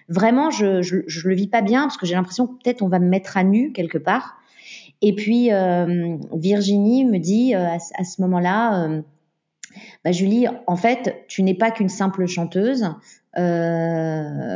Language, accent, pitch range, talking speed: French, French, 180-220 Hz, 180 wpm